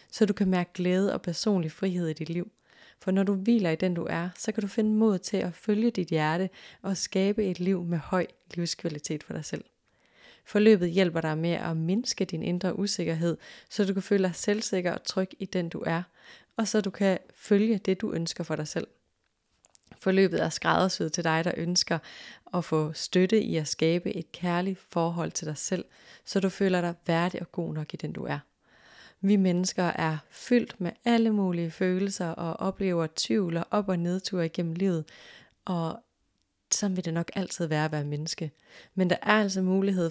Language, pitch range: Danish, 165-195 Hz